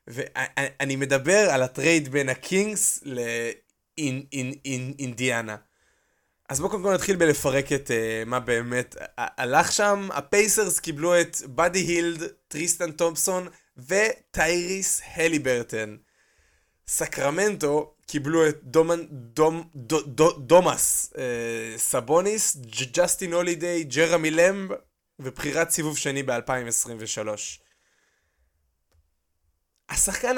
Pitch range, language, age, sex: 135-180 Hz, Hebrew, 20-39, male